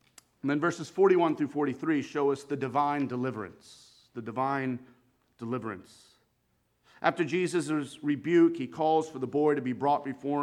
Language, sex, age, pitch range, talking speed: English, male, 40-59, 140-190 Hz, 150 wpm